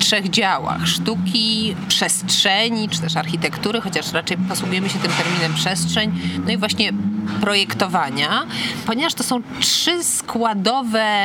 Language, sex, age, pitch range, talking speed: Polish, female, 30-49, 170-210 Hz, 130 wpm